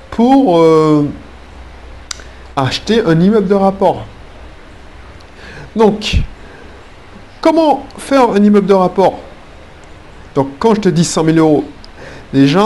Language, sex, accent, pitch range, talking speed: French, male, French, 135-185 Hz, 110 wpm